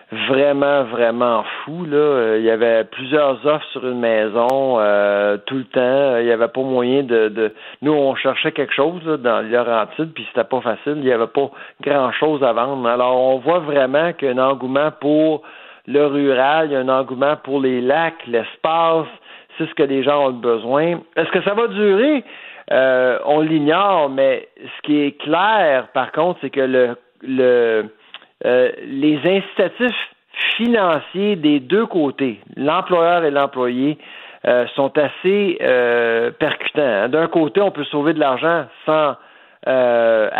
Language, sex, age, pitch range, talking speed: French, male, 50-69, 125-160 Hz, 165 wpm